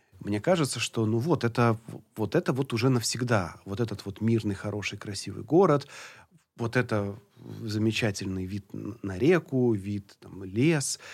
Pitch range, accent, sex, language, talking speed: 100-125 Hz, native, male, Russian, 145 wpm